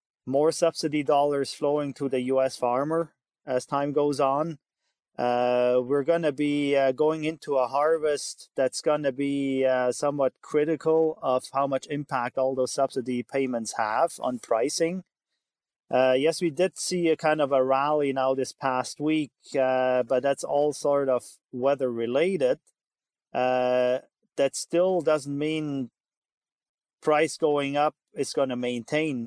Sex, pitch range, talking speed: male, 130-155 Hz, 150 wpm